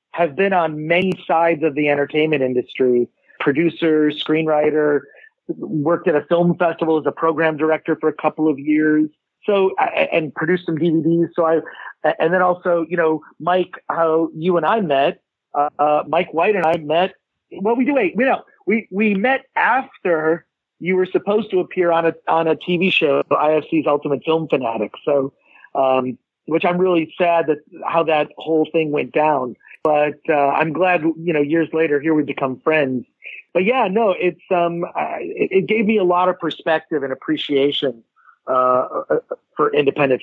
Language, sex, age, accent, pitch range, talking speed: English, male, 40-59, American, 150-180 Hz, 175 wpm